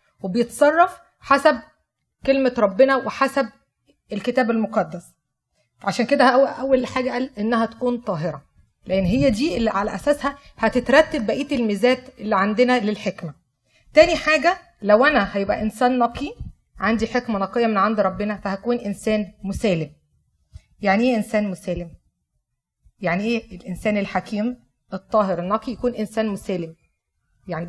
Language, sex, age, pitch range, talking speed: Arabic, female, 30-49, 200-265 Hz, 125 wpm